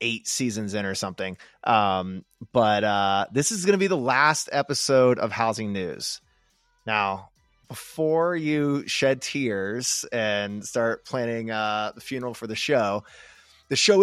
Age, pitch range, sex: 20-39, 110-135 Hz, male